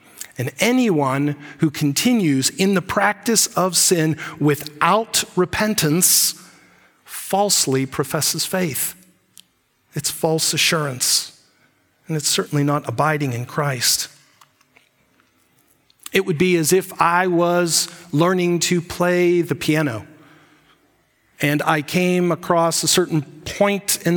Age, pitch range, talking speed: 40-59, 145-180 Hz, 110 wpm